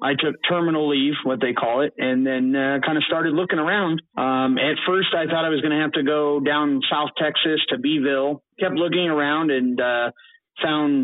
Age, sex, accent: 30-49, male, American